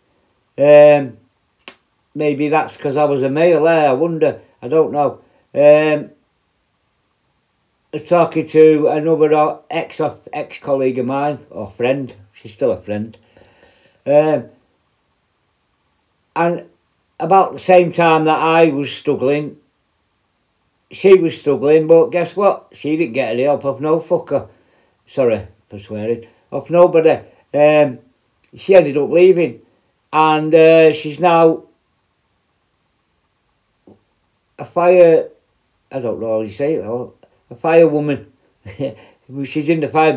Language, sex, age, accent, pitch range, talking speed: English, male, 60-79, British, 125-160 Hz, 125 wpm